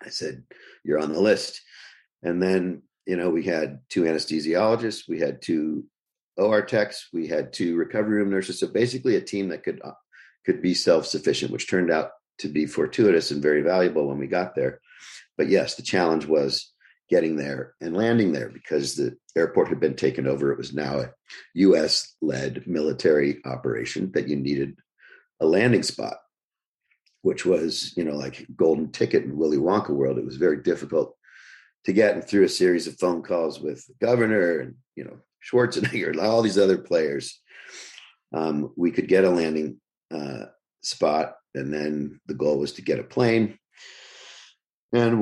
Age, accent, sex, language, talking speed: 50-69, American, male, English, 175 wpm